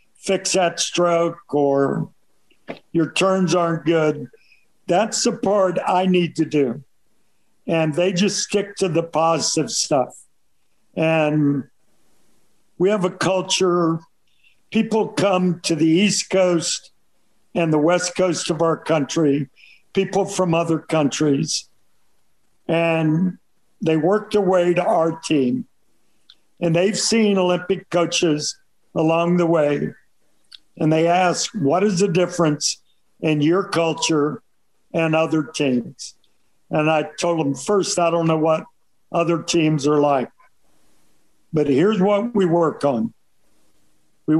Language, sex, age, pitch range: English, male, 60-79, 155-185 Hz